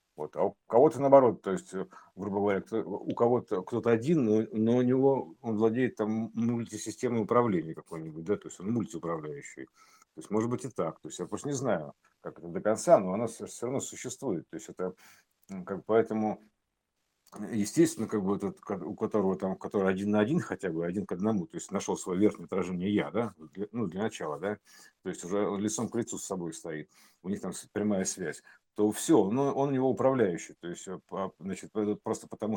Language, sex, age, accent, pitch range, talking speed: Russian, male, 50-69, native, 95-115 Hz, 200 wpm